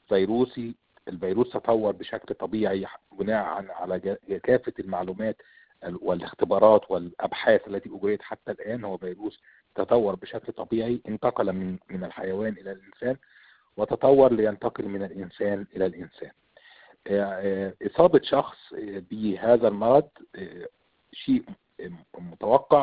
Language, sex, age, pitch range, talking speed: Arabic, male, 50-69, 95-125 Hz, 100 wpm